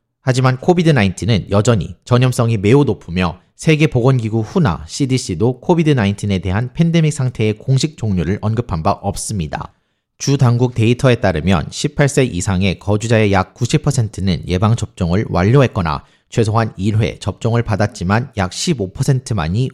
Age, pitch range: 30-49, 95-130 Hz